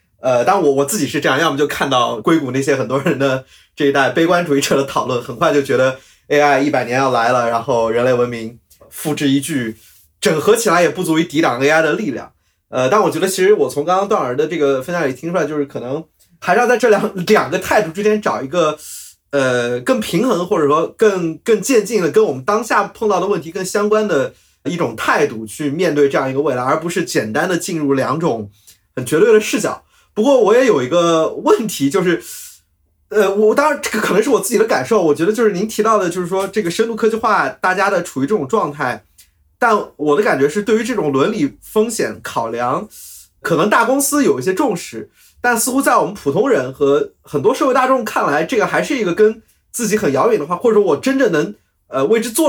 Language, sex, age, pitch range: Chinese, male, 30-49, 140-225 Hz